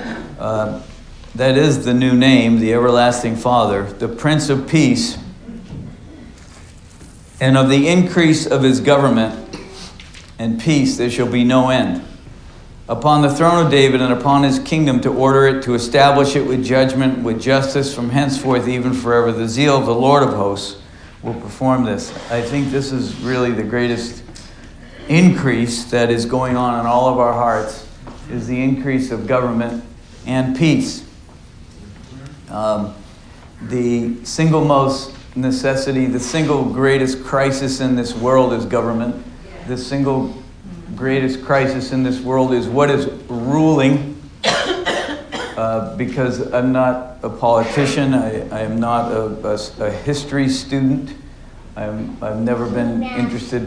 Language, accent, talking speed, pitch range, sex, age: English, American, 140 wpm, 115-135 Hz, male, 50-69